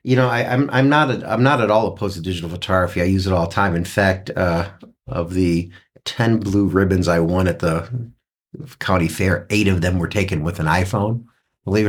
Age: 50-69